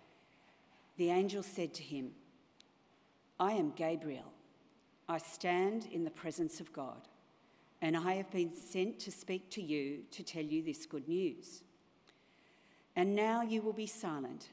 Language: English